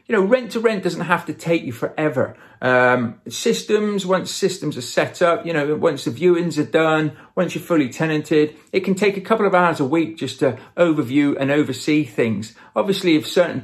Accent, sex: British, male